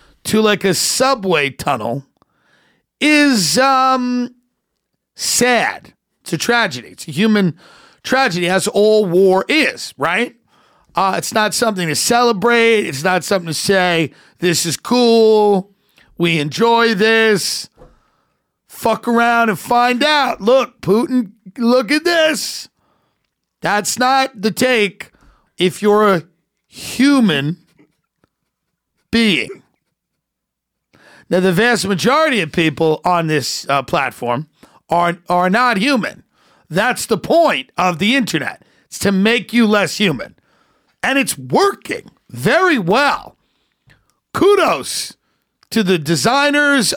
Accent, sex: American, male